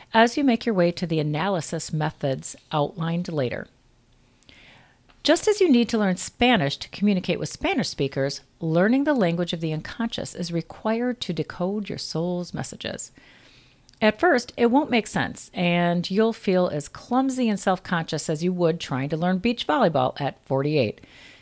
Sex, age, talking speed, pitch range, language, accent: female, 40-59, 165 wpm, 155-215 Hz, English, American